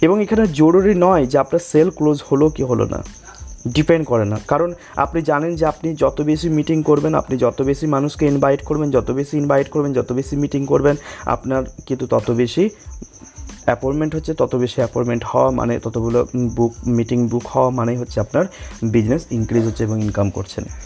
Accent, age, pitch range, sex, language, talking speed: native, 30-49, 125-165 Hz, male, Bengali, 155 wpm